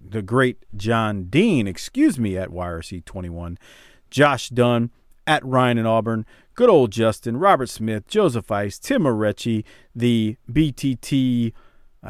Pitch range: 100-130 Hz